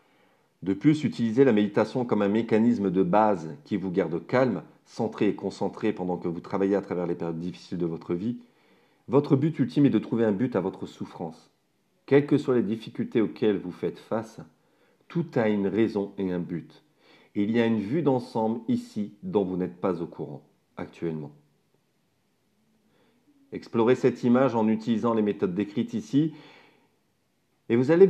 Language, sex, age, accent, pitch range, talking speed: French, male, 40-59, French, 100-135 Hz, 175 wpm